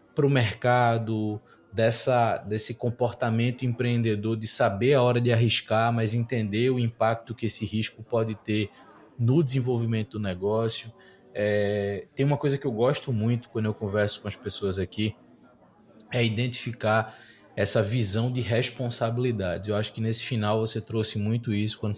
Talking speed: 155 wpm